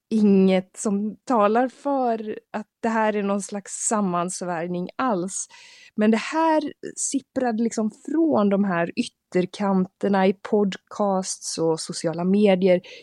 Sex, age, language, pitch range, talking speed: female, 20-39, Swedish, 165-220 Hz, 120 wpm